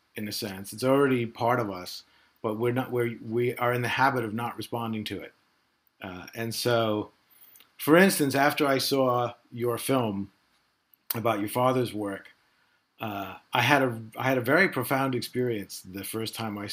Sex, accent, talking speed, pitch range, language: male, American, 170 wpm, 110-135 Hz, English